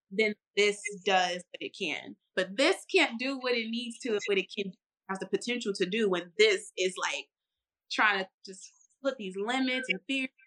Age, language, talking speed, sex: 20-39, English, 205 wpm, female